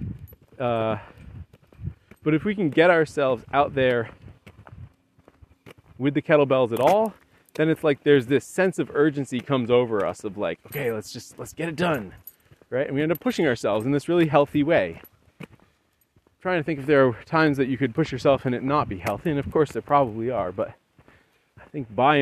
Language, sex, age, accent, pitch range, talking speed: English, male, 30-49, American, 115-150 Hz, 195 wpm